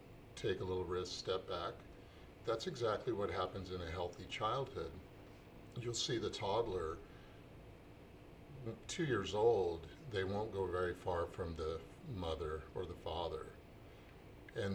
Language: English